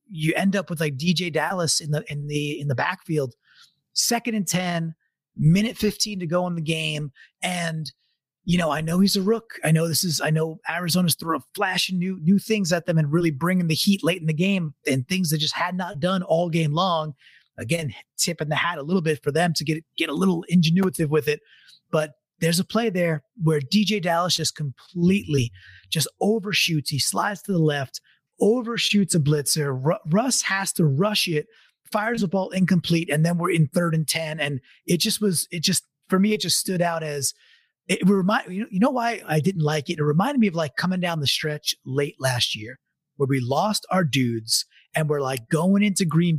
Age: 30-49